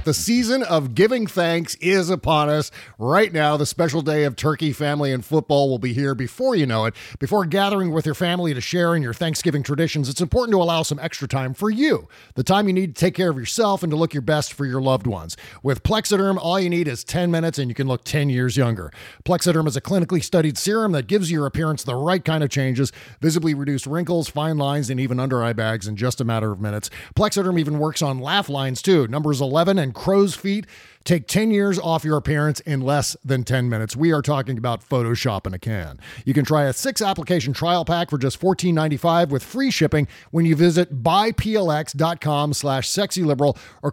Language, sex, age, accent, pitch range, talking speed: English, male, 40-59, American, 135-175 Hz, 220 wpm